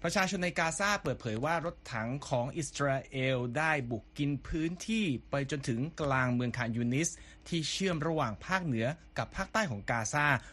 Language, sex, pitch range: Thai, male, 115-150 Hz